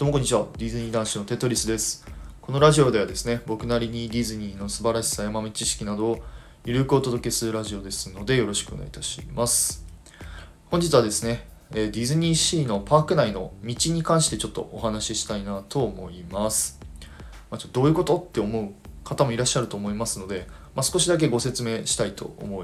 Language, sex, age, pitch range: Japanese, male, 20-39, 100-130 Hz